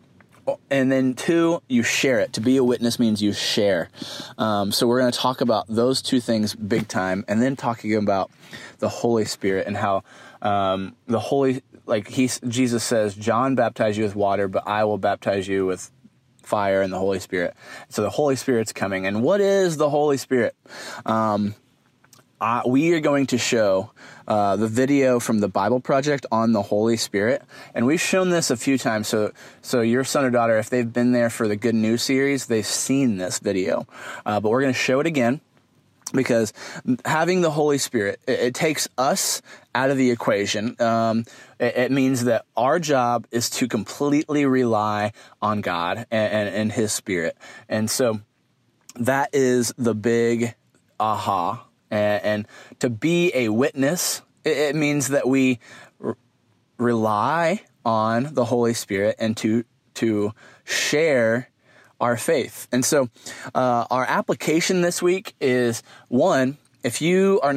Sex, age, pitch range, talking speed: male, 20-39, 110-135 Hz, 170 wpm